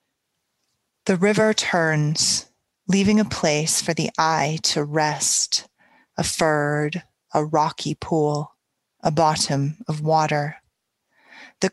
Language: English